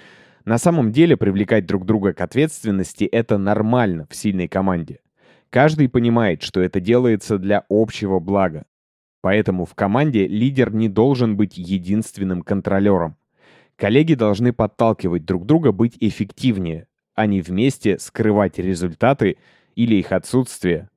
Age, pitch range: 20-39, 95-120 Hz